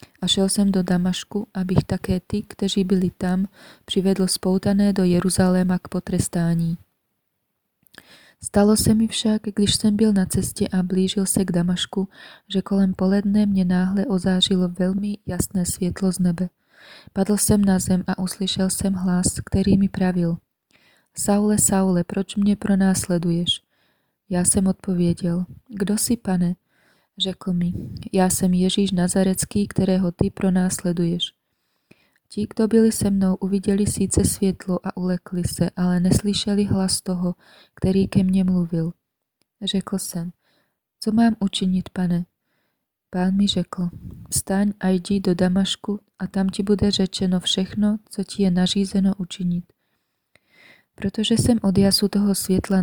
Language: Czech